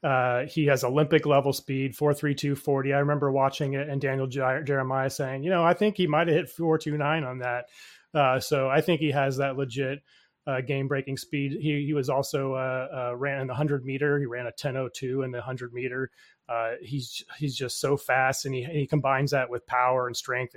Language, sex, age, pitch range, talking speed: English, male, 30-49, 125-145 Hz, 210 wpm